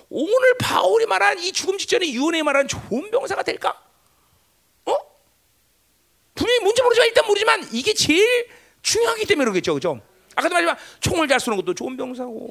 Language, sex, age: Korean, male, 40-59